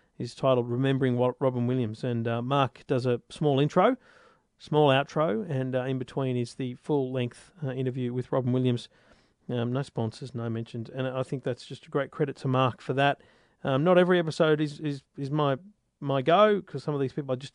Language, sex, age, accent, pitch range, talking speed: English, male, 40-59, Australian, 125-165 Hz, 205 wpm